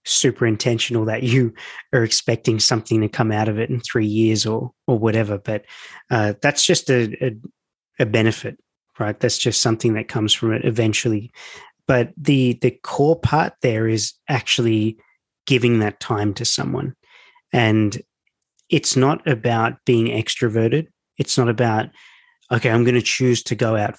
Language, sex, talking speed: English, male, 165 wpm